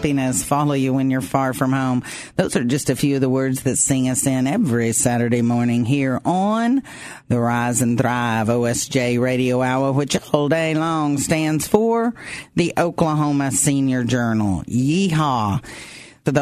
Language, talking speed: English, 155 wpm